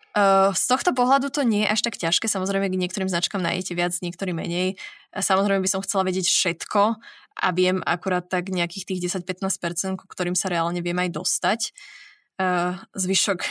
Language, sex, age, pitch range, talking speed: Slovak, female, 20-39, 185-225 Hz, 165 wpm